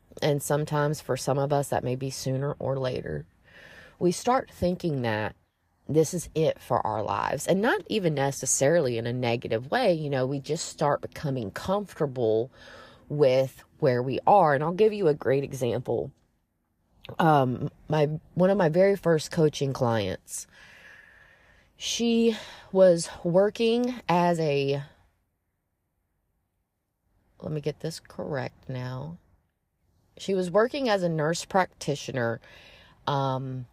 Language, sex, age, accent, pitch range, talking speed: English, female, 30-49, American, 120-165 Hz, 135 wpm